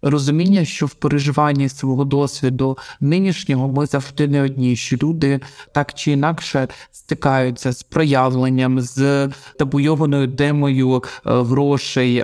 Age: 20-39